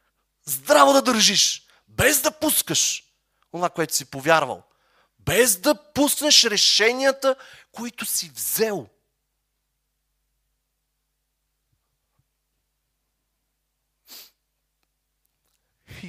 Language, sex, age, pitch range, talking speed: Bulgarian, male, 30-49, 135-200 Hz, 65 wpm